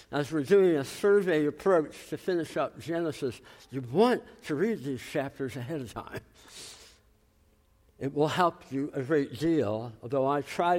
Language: English